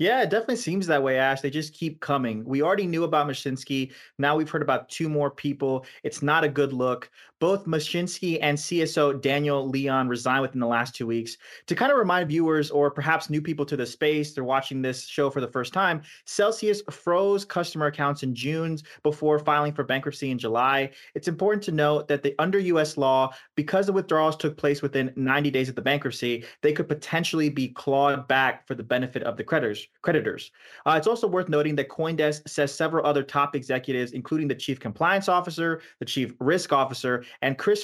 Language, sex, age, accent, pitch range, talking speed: English, male, 20-39, American, 130-160 Hz, 200 wpm